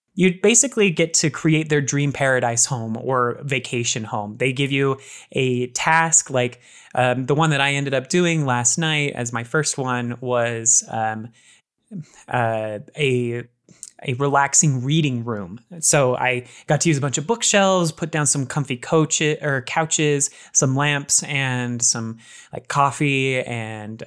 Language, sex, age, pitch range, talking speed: English, male, 20-39, 125-150 Hz, 155 wpm